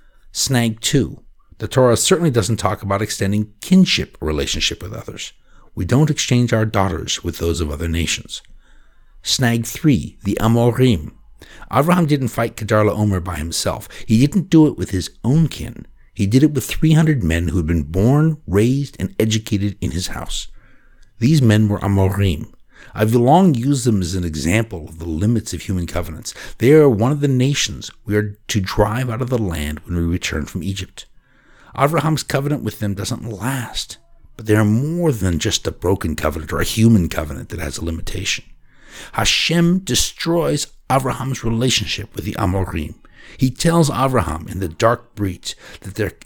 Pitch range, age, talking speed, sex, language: 90-125 Hz, 60-79, 175 wpm, male, English